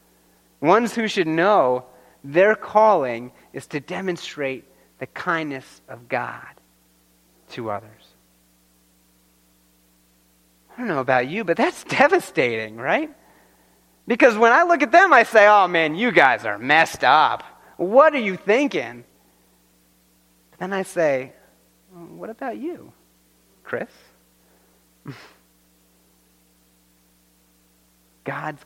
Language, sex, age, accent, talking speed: English, male, 30-49, American, 105 wpm